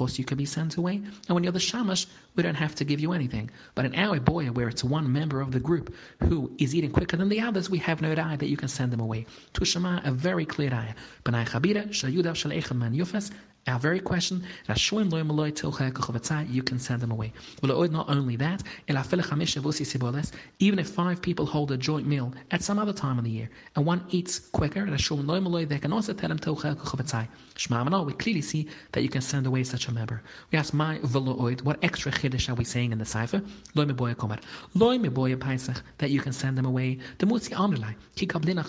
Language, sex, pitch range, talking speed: English, male, 130-175 Hz, 185 wpm